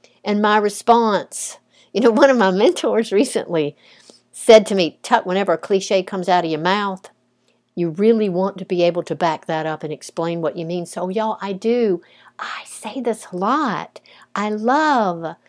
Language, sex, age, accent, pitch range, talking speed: English, female, 60-79, American, 165-225 Hz, 180 wpm